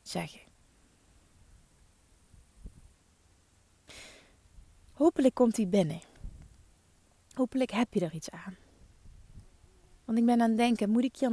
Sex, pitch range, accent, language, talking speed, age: female, 200-285 Hz, Dutch, Dutch, 105 wpm, 20-39